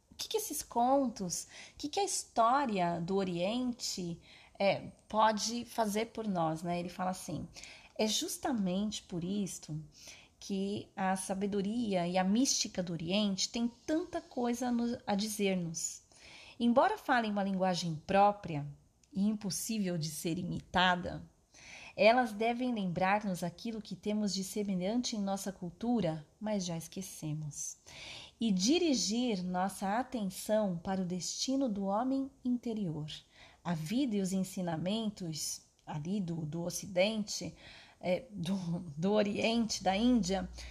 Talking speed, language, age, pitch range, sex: 130 wpm, Portuguese, 30-49, 180-240 Hz, female